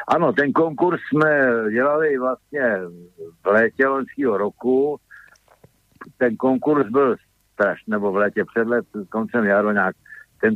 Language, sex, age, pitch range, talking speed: Slovak, male, 60-79, 105-125 Hz, 125 wpm